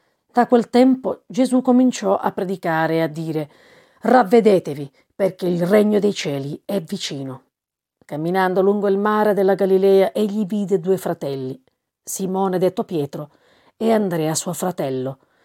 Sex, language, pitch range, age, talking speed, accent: female, Italian, 155-215 Hz, 40-59, 135 wpm, native